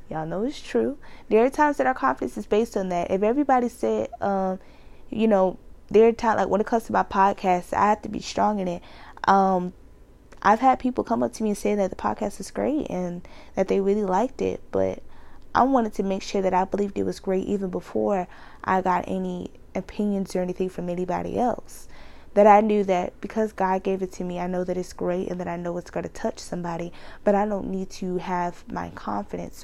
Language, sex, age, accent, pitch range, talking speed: English, female, 20-39, American, 175-205 Hz, 230 wpm